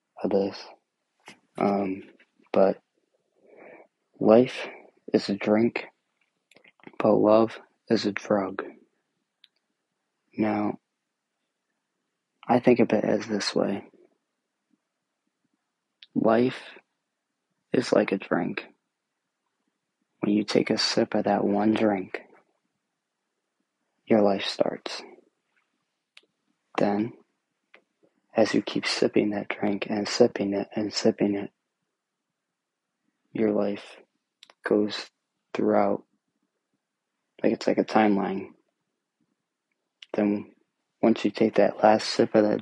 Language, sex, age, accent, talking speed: English, male, 20-39, American, 95 wpm